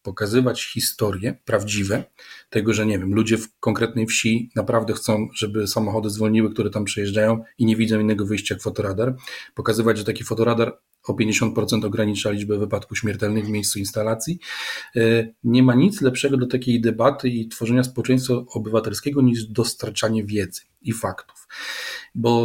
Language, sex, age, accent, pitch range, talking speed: Polish, male, 40-59, native, 110-130 Hz, 150 wpm